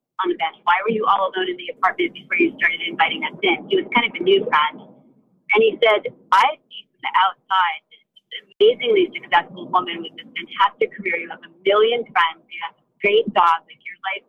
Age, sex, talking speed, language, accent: 30-49, female, 225 wpm, English, American